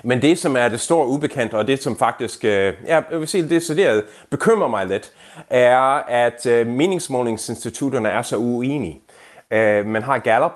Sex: male